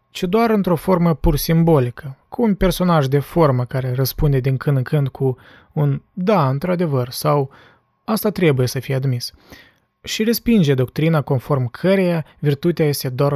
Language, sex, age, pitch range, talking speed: Romanian, male, 20-39, 135-180 Hz, 155 wpm